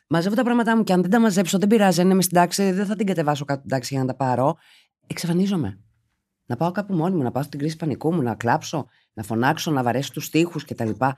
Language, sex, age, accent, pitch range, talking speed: Greek, female, 30-49, native, 125-185 Hz, 250 wpm